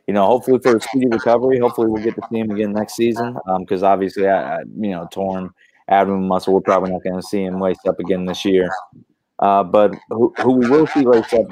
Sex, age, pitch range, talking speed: male, 30-49, 100-120 Hz, 240 wpm